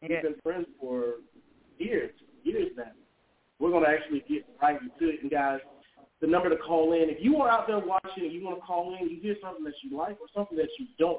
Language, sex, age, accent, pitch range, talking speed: English, male, 40-59, American, 155-220 Hz, 240 wpm